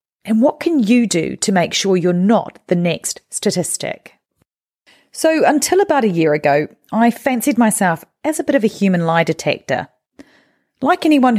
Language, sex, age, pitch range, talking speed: English, female, 30-49, 165-270 Hz, 170 wpm